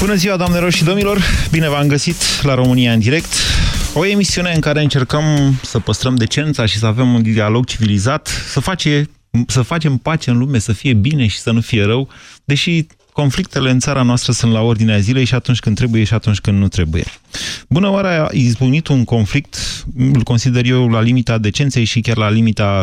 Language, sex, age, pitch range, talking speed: Romanian, male, 30-49, 105-140 Hz, 195 wpm